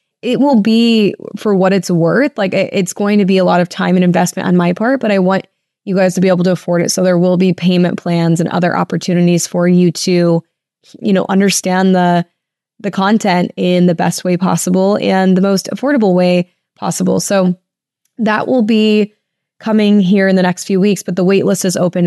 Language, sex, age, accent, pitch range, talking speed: English, female, 20-39, American, 175-195 Hz, 210 wpm